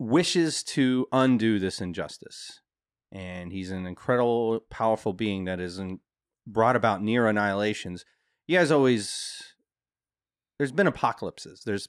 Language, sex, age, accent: English, male, 30-49, American